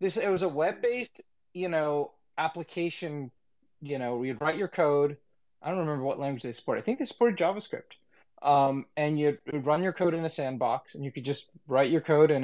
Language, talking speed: English, 215 wpm